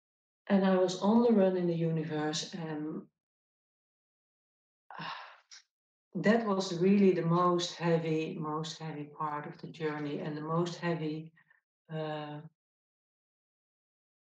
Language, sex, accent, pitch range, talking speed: English, female, Dutch, 165-210 Hz, 120 wpm